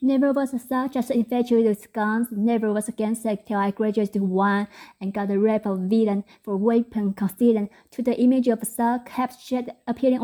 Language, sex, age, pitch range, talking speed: English, female, 20-39, 195-235 Hz, 190 wpm